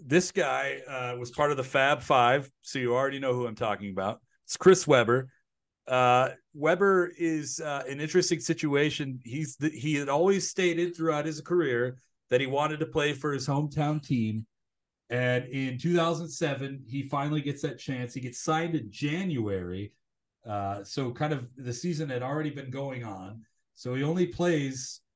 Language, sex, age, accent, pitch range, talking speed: English, male, 40-59, American, 120-160 Hz, 175 wpm